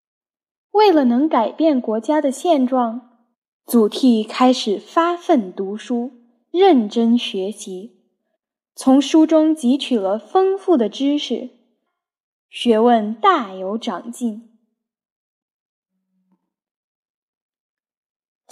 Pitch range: 225-315 Hz